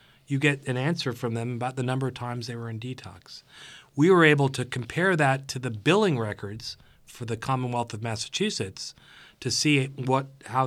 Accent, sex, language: American, male, English